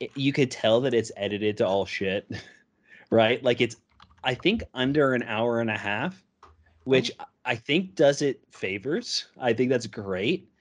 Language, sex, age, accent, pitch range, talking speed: English, male, 30-49, American, 100-125 Hz, 170 wpm